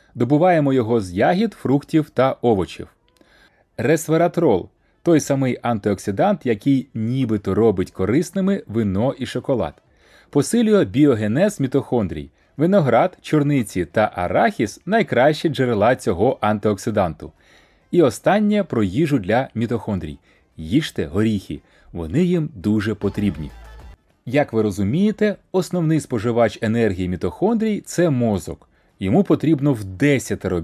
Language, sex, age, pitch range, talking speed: Ukrainian, male, 30-49, 105-160 Hz, 110 wpm